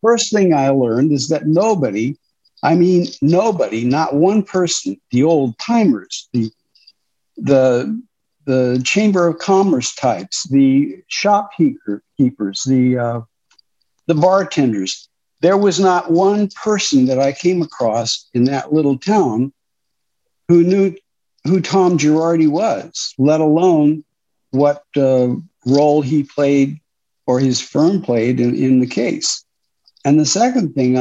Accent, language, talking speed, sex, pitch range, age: American, English, 130 wpm, male, 125-165 Hz, 60-79